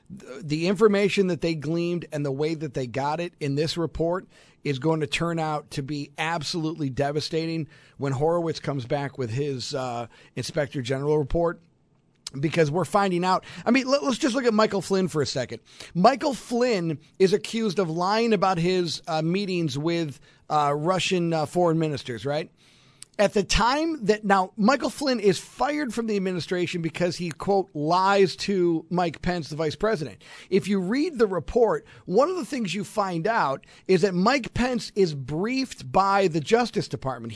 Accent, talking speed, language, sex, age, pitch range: American, 175 wpm, English, male, 40-59, 155-220 Hz